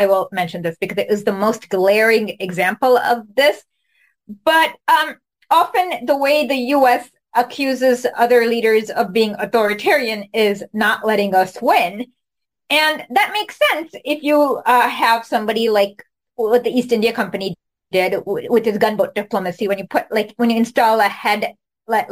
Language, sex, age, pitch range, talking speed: English, female, 20-39, 200-275 Hz, 165 wpm